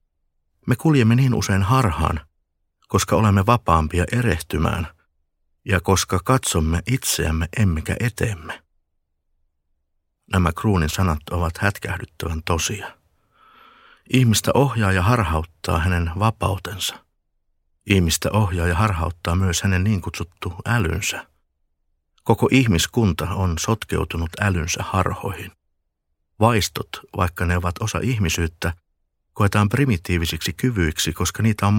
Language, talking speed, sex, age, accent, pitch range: Finnish, 100 wpm, male, 60-79, native, 80-105 Hz